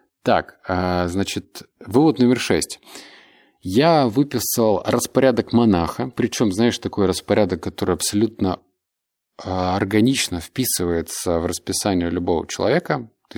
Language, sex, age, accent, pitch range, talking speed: Russian, male, 20-39, native, 85-120 Hz, 100 wpm